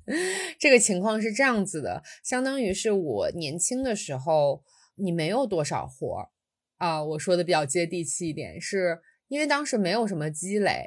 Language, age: Chinese, 20-39